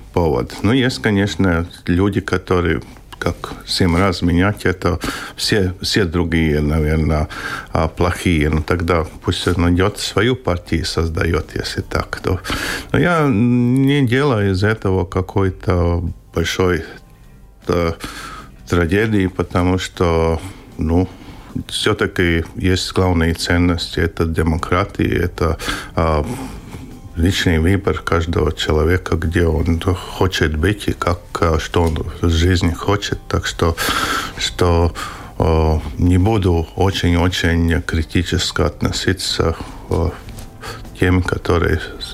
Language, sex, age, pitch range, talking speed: Russian, male, 50-69, 85-100 Hz, 105 wpm